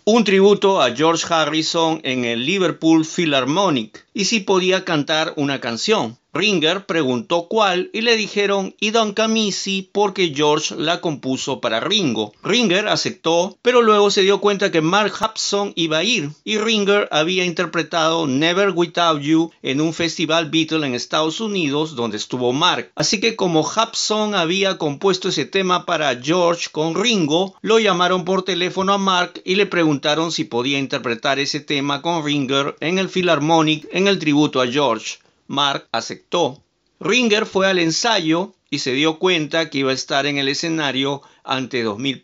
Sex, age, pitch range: male, 50-69, 145-195 Hz